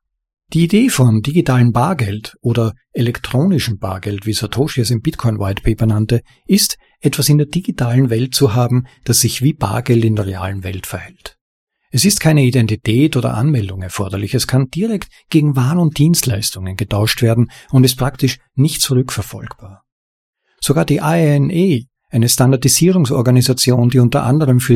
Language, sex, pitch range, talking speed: German, male, 110-140 Hz, 150 wpm